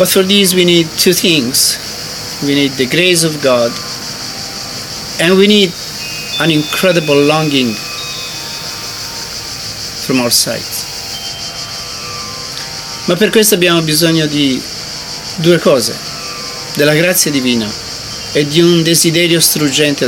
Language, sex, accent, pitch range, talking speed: English, male, Italian, 120-160 Hz, 115 wpm